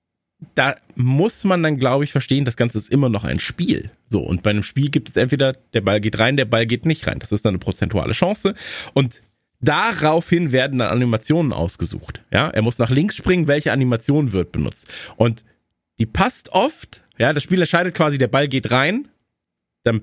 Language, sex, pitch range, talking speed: German, male, 110-135 Hz, 200 wpm